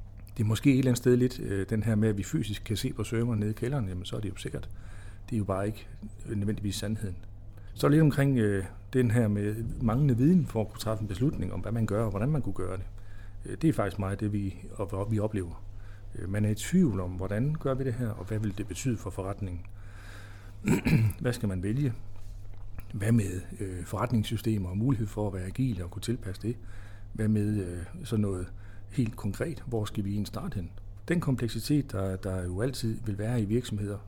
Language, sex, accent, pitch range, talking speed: Danish, male, native, 100-115 Hz, 215 wpm